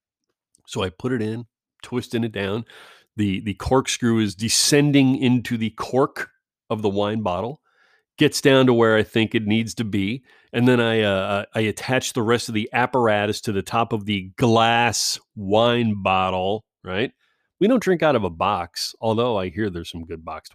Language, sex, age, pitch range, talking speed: English, male, 30-49, 105-135 Hz, 185 wpm